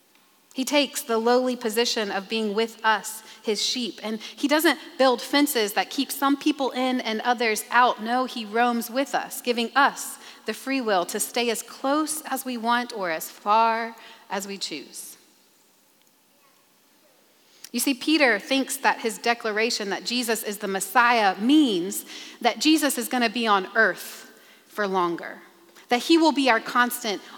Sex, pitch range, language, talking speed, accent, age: female, 220-275 Hz, English, 165 wpm, American, 30-49